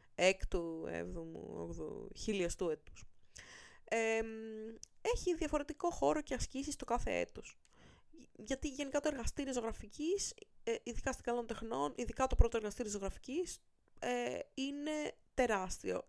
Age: 20-39